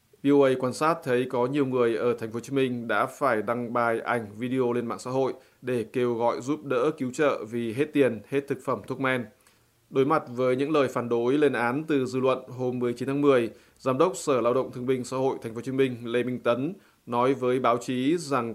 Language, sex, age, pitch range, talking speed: Vietnamese, male, 20-39, 120-135 Hz, 245 wpm